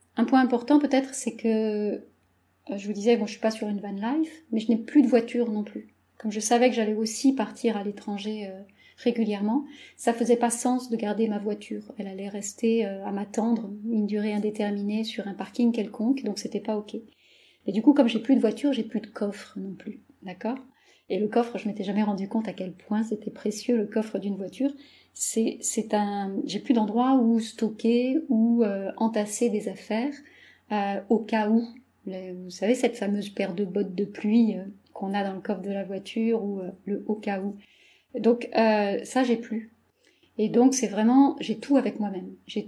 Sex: female